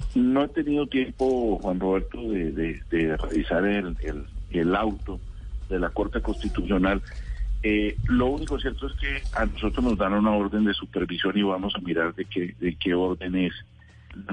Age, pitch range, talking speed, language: 50-69, 90-110 Hz, 180 wpm, Spanish